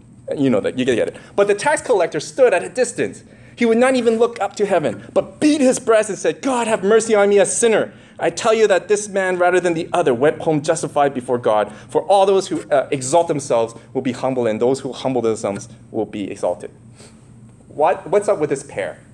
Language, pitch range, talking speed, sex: English, 115-170 Hz, 230 wpm, male